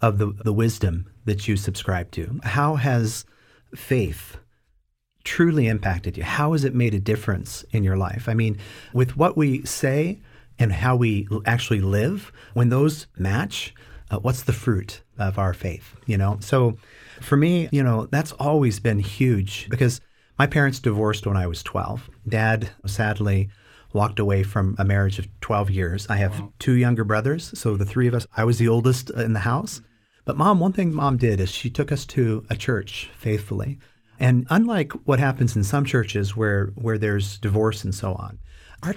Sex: male